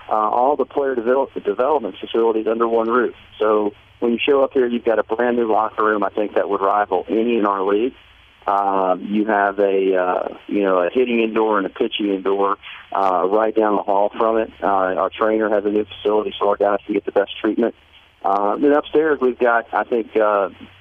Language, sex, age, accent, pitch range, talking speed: English, male, 40-59, American, 100-115 Hz, 215 wpm